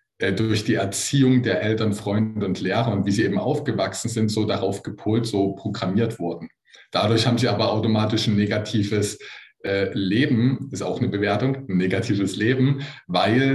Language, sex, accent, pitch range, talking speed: German, male, German, 100-120 Hz, 160 wpm